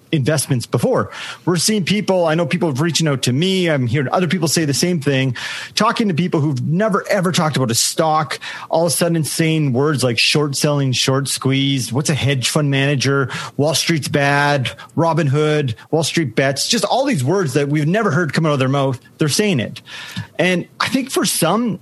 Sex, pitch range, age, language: male, 135-170 Hz, 30-49, English